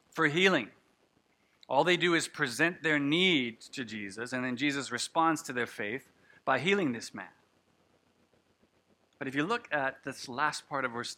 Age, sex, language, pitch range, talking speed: 50-69, male, English, 120-150 Hz, 170 wpm